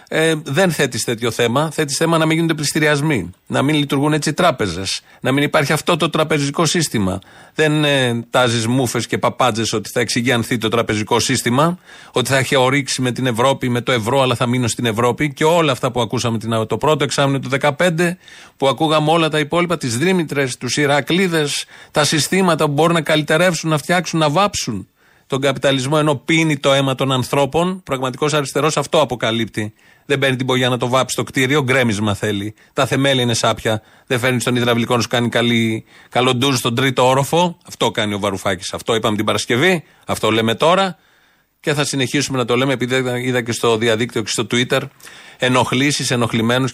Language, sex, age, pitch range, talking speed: Greek, male, 40-59, 120-150 Hz, 185 wpm